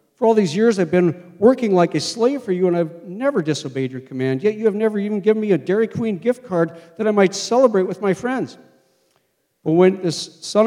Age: 50-69